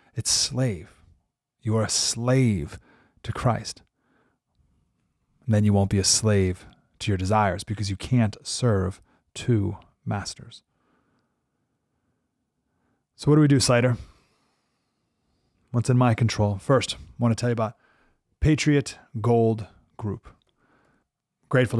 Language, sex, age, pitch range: English, male, 30-49, 110-130 Hz